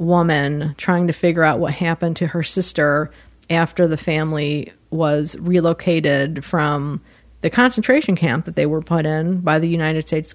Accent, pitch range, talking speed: American, 155-185 Hz, 160 wpm